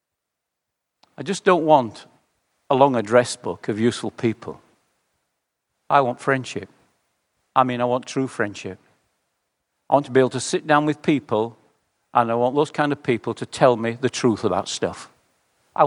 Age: 50-69